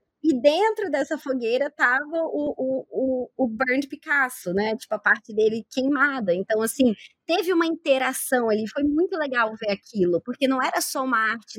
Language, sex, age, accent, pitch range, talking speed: Portuguese, male, 20-39, Brazilian, 205-270 Hz, 175 wpm